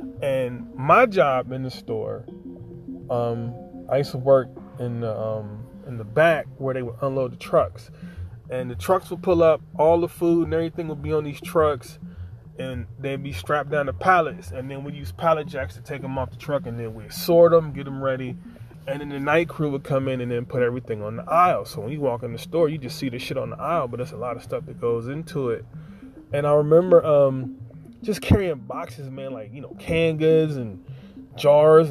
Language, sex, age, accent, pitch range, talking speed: English, male, 20-39, American, 120-165 Hz, 225 wpm